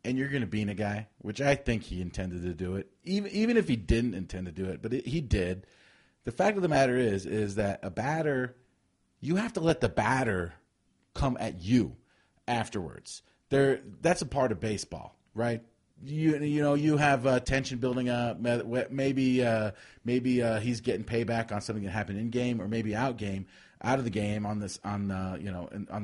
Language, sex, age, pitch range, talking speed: English, male, 30-49, 105-135 Hz, 215 wpm